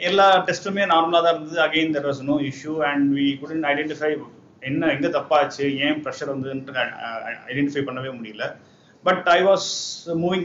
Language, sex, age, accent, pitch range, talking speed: English, male, 30-49, Indian, 130-170 Hz, 75 wpm